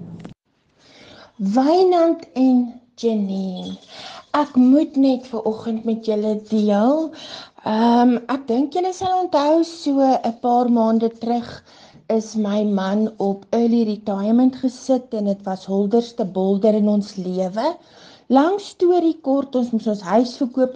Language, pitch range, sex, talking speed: English, 210-270 Hz, female, 135 wpm